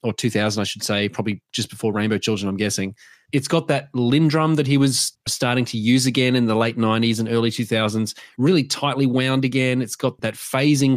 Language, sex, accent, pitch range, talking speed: English, male, Australian, 115-135 Hz, 210 wpm